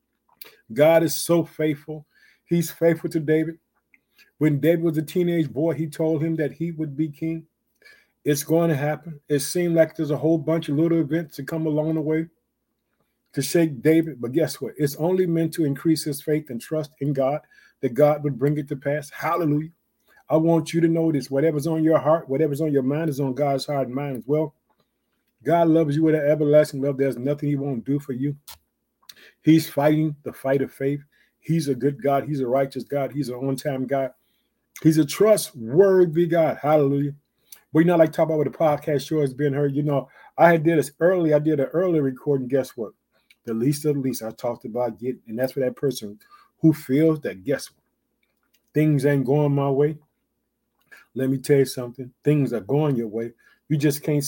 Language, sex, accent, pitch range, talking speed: English, male, American, 140-160 Hz, 210 wpm